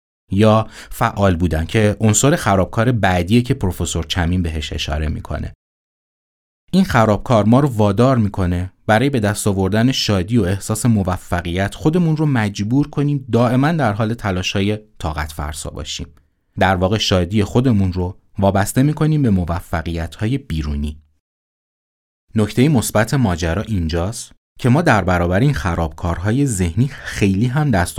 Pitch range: 80-110 Hz